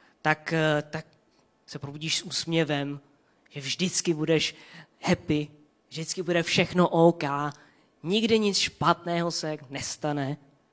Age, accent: 20-39, native